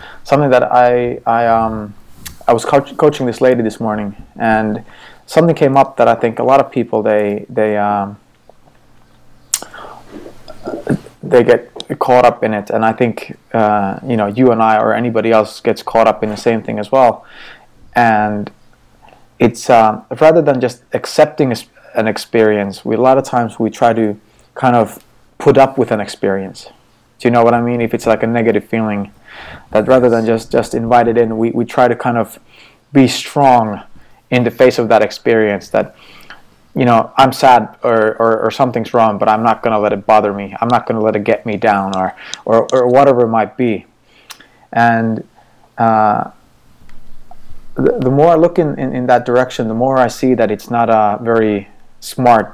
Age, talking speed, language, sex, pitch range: 20-39, 190 wpm, English, male, 110-125 Hz